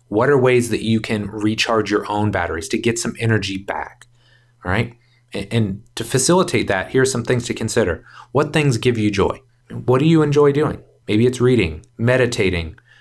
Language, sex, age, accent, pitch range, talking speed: English, male, 30-49, American, 110-125 Hz, 195 wpm